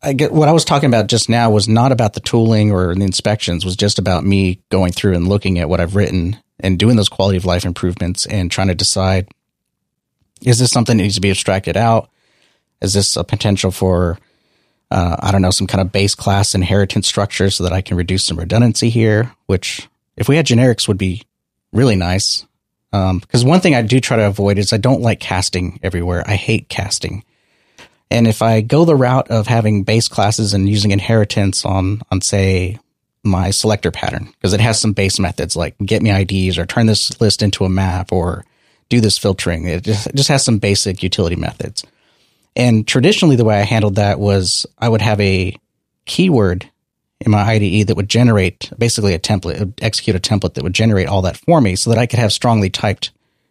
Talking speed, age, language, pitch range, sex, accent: 215 wpm, 30-49, English, 95-115 Hz, male, American